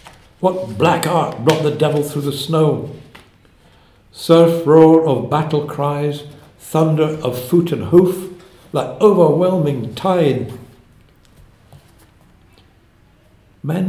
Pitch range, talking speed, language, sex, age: 105-145 Hz, 100 wpm, English, male, 60-79